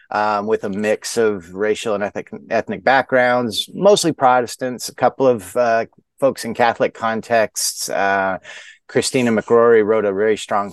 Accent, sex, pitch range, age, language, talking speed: American, male, 95-130 Hz, 30-49, English, 150 wpm